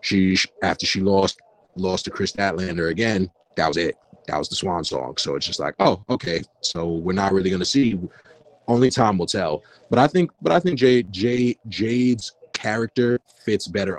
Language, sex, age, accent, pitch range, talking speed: English, male, 30-49, American, 85-100 Hz, 195 wpm